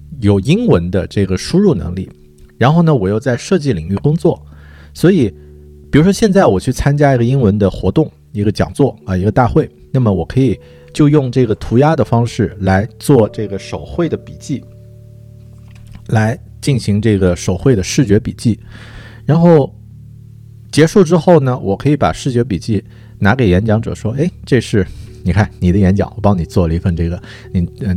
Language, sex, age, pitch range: Chinese, male, 50-69, 95-125 Hz